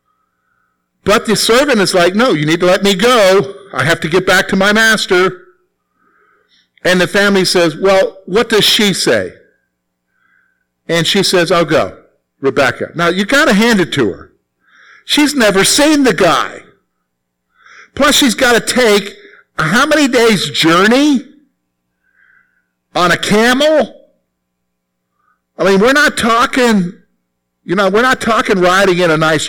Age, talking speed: 50-69, 155 wpm